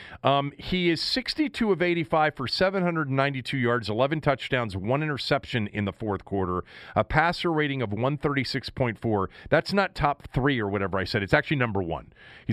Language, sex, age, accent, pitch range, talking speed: English, male, 40-59, American, 115-160 Hz, 225 wpm